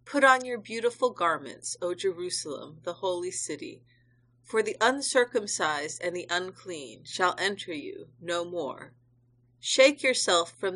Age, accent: 40-59, American